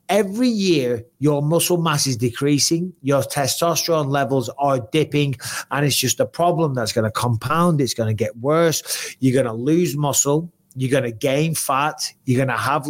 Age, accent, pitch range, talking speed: 30-49, British, 125-160 Hz, 185 wpm